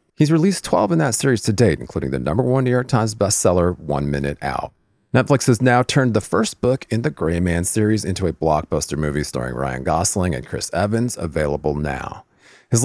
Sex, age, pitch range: male, 40-59, 85-120 Hz